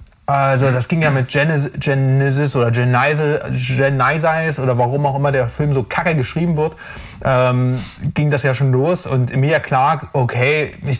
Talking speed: 165 wpm